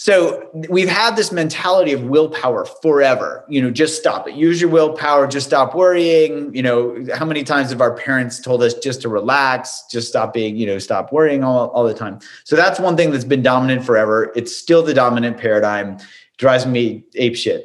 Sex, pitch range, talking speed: male, 120-155 Hz, 200 wpm